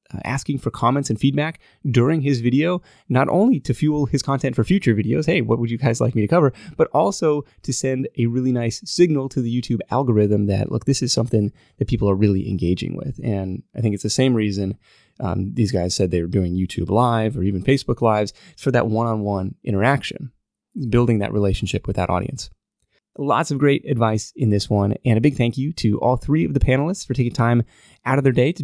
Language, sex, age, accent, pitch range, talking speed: English, male, 20-39, American, 110-145 Hz, 220 wpm